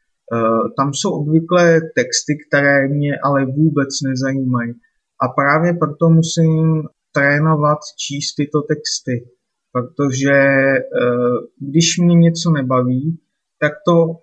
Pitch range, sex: 140-165 Hz, male